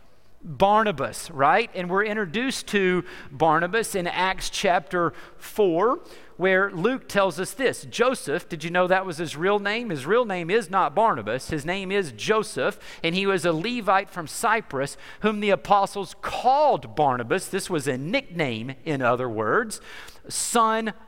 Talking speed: 155 wpm